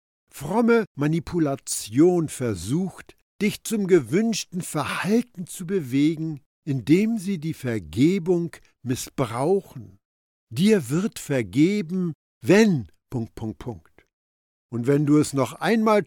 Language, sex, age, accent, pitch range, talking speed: German, male, 60-79, German, 125-200 Hz, 90 wpm